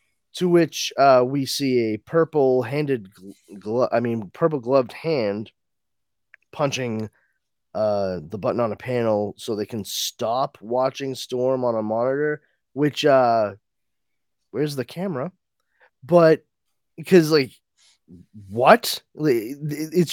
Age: 20-39